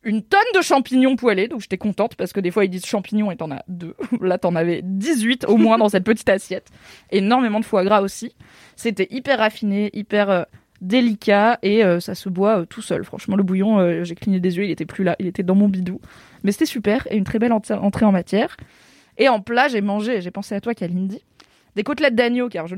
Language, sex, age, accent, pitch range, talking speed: French, female, 20-39, French, 190-235 Hz, 225 wpm